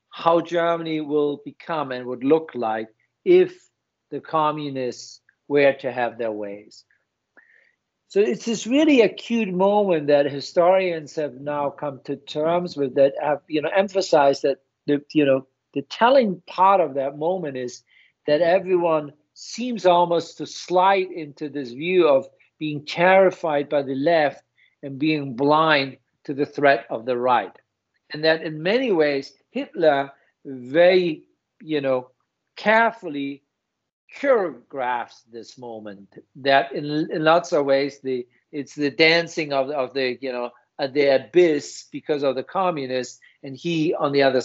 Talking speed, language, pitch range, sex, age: 145 wpm, English, 130-165 Hz, male, 50-69